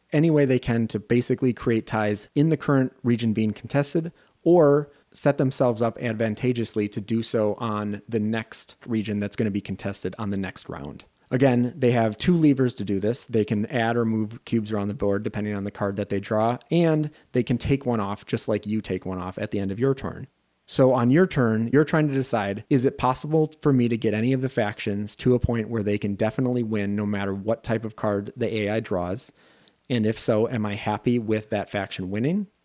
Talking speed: 225 wpm